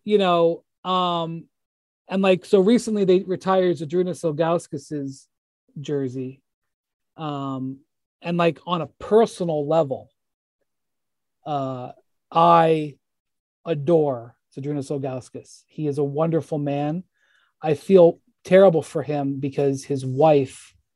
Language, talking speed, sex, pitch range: English, 105 wpm, male, 140-185 Hz